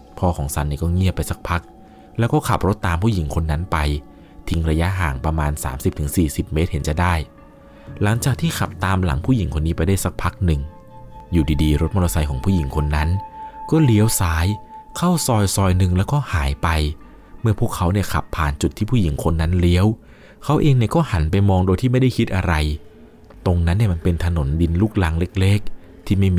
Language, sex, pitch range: Thai, male, 80-105 Hz